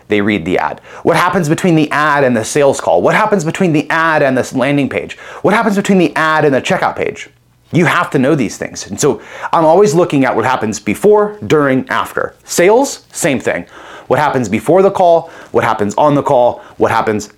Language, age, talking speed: English, 30-49, 220 wpm